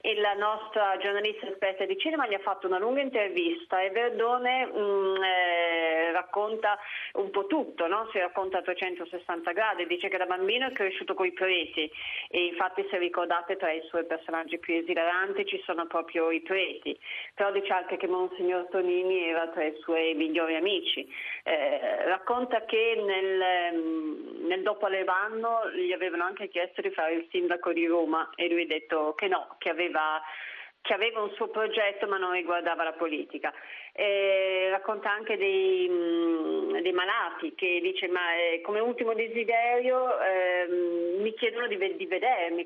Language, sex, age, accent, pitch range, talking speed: Italian, female, 30-49, native, 175-225 Hz, 160 wpm